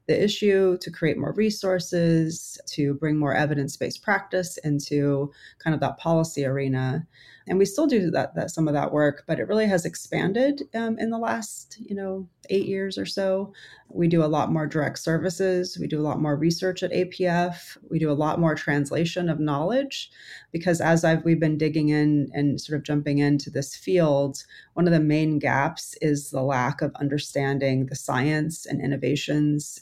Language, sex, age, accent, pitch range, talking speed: English, female, 30-49, American, 145-175 Hz, 185 wpm